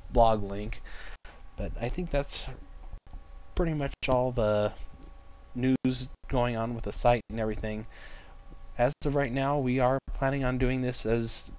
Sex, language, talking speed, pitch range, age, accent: male, English, 150 wpm, 95-125 Hz, 20-39, American